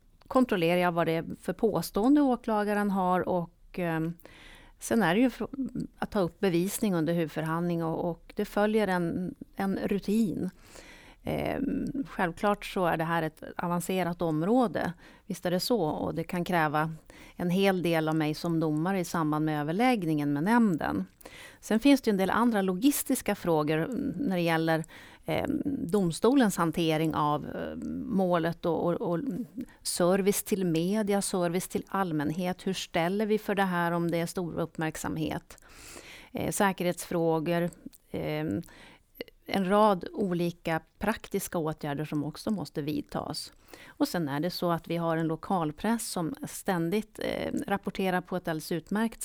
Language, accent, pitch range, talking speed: Swedish, native, 165-210 Hz, 145 wpm